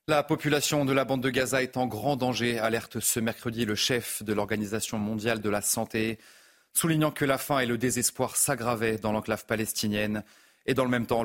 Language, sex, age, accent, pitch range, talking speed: French, male, 30-49, French, 105-130 Hz, 205 wpm